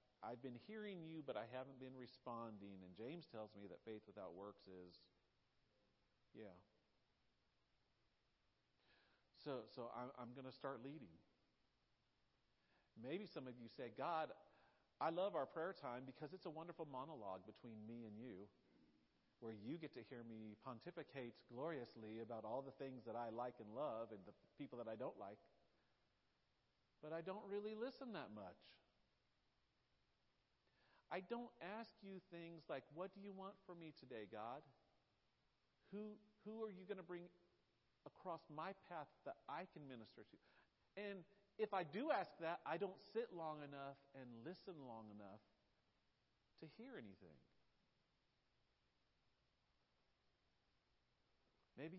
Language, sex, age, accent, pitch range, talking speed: English, male, 50-69, American, 115-175 Hz, 145 wpm